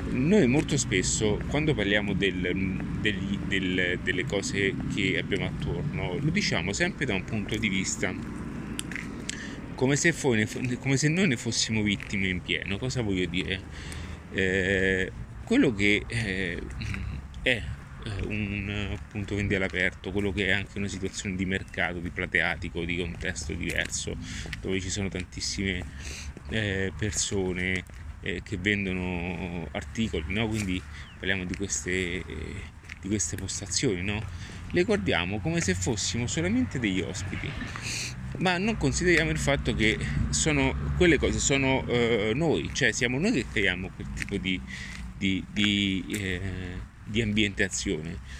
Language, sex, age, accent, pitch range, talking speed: Italian, male, 30-49, native, 90-105 Hz, 135 wpm